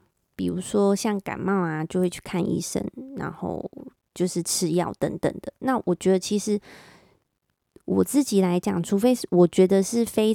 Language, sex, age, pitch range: Chinese, female, 20-39, 175-205 Hz